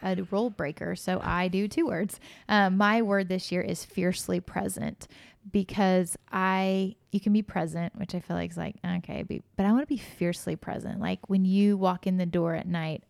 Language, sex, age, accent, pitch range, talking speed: English, female, 20-39, American, 175-205 Hz, 205 wpm